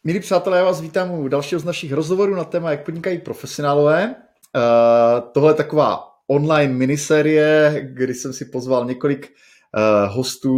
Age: 30-49